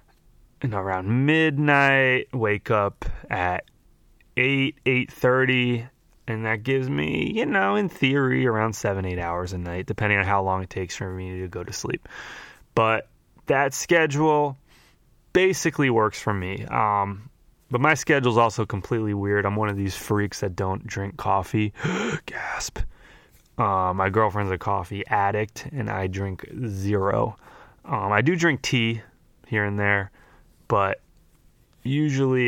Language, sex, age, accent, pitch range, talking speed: English, male, 20-39, American, 100-125 Hz, 145 wpm